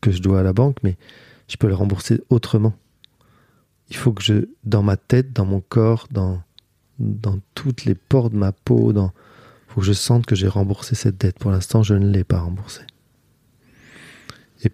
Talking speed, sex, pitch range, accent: 195 wpm, male, 100-120 Hz, French